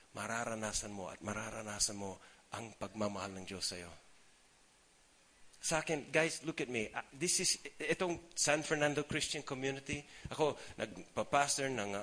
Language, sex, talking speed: English, male, 130 wpm